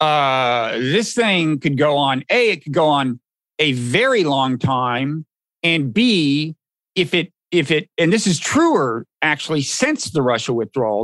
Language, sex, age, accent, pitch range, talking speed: English, male, 50-69, American, 145-215 Hz, 165 wpm